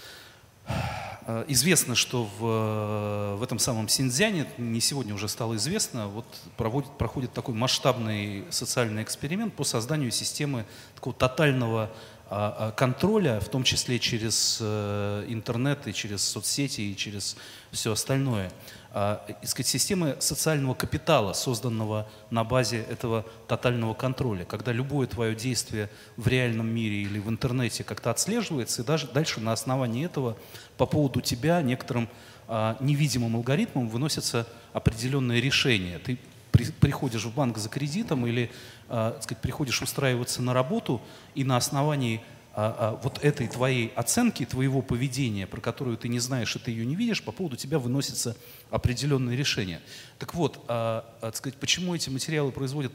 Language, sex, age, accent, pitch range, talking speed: Russian, male, 30-49, native, 115-140 Hz, 140 wpm